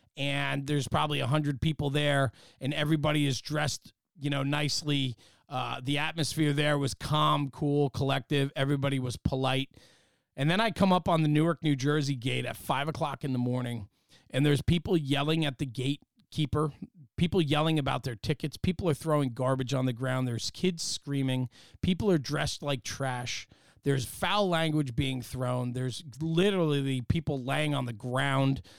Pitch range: 125-155 Hz